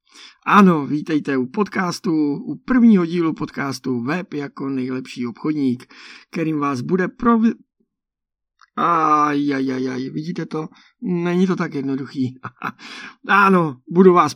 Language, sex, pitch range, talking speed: Czech, male, 130-175 Hz, 115 wpm